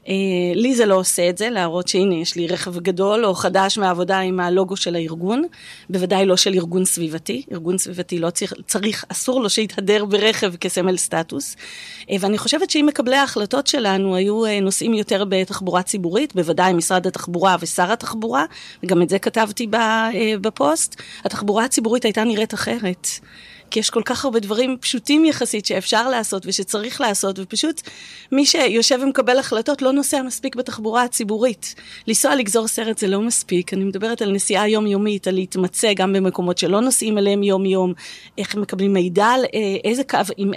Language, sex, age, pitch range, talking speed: Hebrew, female, 30-49, 185-235 Hz, 165 wpm